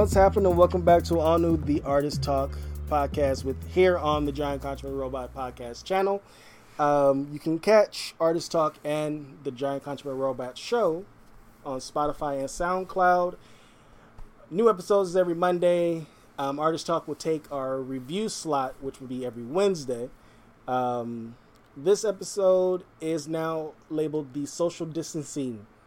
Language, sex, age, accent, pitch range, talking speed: English, male, 20-39, American, 120-160 Hz, 145 wpm